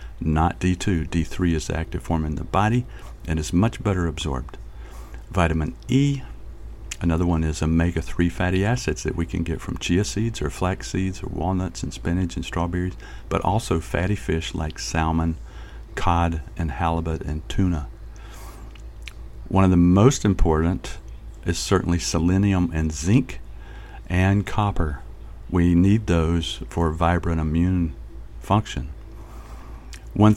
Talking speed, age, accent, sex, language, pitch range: 140 wpm, 50-69, American, male, English, 80-95 Hz